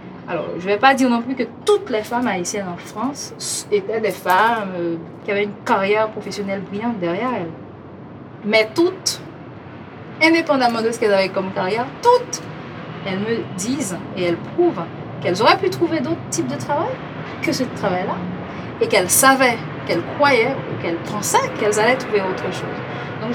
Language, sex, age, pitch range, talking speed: French, female, 30-49, 185-255 Hz, 170 wpm